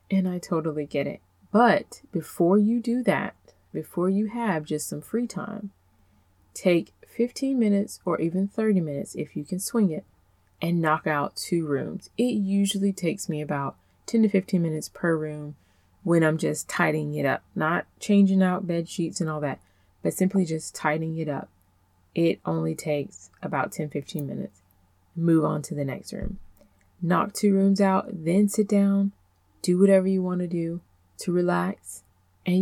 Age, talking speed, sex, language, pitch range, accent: 20-39, 175 wpm, female, English, 150-195 Hz, American